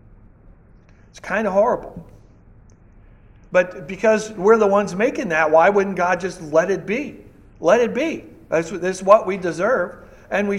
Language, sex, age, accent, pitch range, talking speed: English, male, 60-79, American, 155-210 Hz, 145 wpm